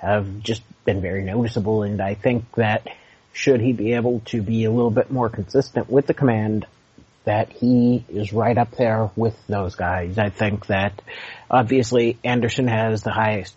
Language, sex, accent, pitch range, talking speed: English, male, American, 105-120 Hz, 175 wpm